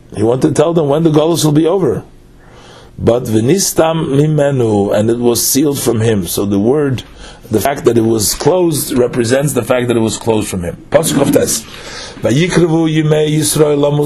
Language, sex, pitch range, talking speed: English, male, 115-155 Hz, 160 wpm